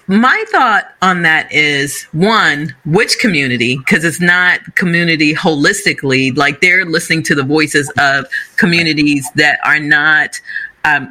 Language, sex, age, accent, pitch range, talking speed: English, female, 40-59, American, 150-200 Hz, 135 wpm